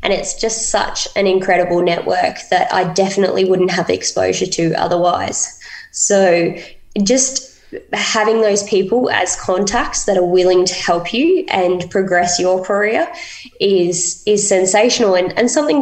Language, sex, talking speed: English, female, 145 wpm